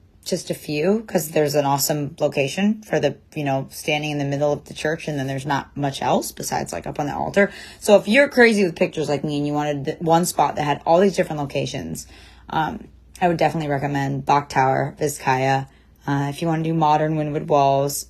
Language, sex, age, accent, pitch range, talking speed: English, female, 20-39, American, 145-180 Hz, 220 wpm